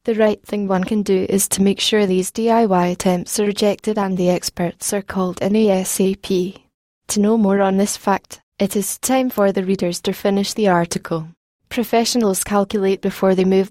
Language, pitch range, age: English, 185-215 Hz, 10-29